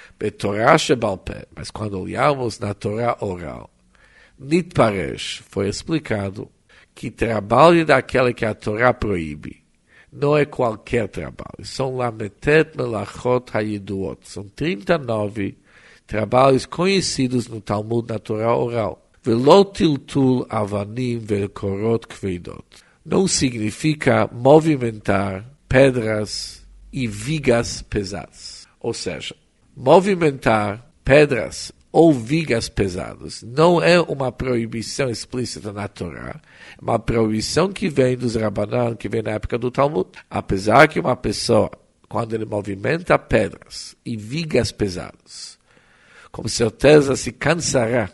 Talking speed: 95 wpm